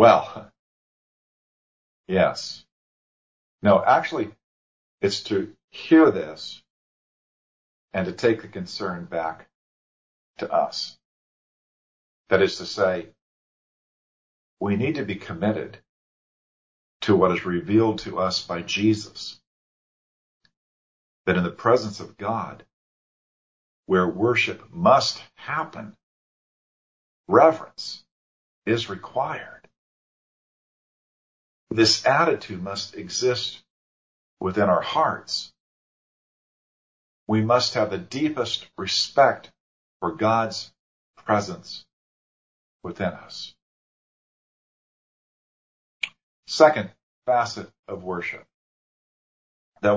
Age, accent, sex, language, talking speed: 50-69, American, male, English, 85 wpm